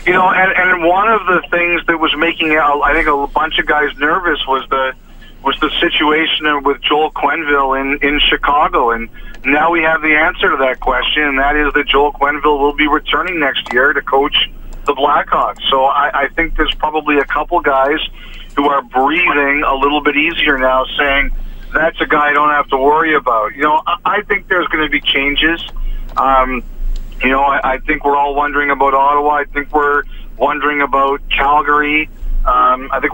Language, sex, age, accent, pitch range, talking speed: English, male, 50-69, American, 140-155 Hz, 195 wpm